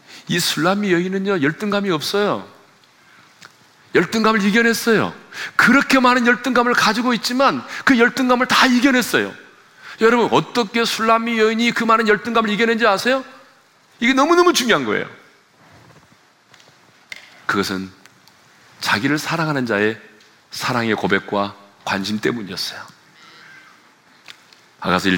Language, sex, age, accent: Korean, male, 40-59, native